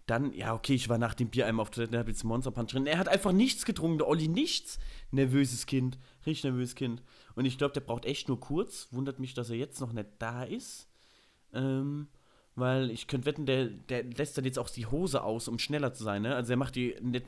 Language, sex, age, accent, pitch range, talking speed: German, male, 30-49, German, 115-145 Hz, 245 wpm